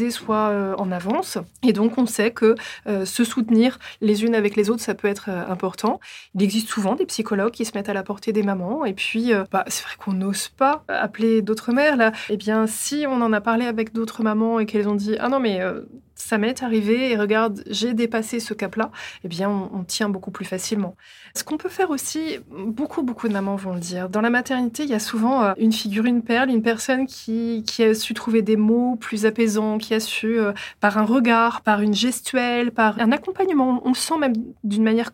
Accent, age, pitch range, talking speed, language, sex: French, 20-39, 200-240 Hz, 235 wpm, French, female